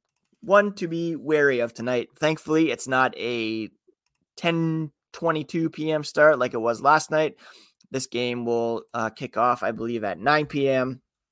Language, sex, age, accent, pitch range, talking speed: English, male, 20-39, American, 120-155 Hz, 160 wpm